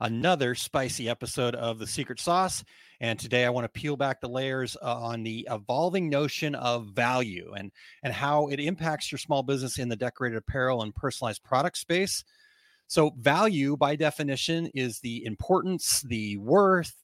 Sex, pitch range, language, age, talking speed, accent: male, 120-155 Hz, English, 30-49, 170 wpm, American